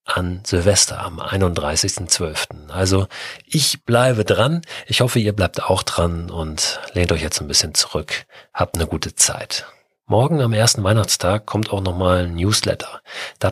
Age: 40-59